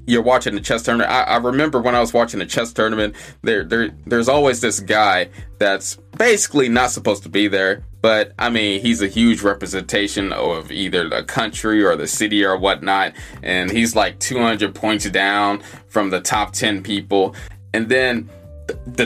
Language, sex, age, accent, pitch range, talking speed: English, male, 20-39, American, 100-125 Hz, 185 wpm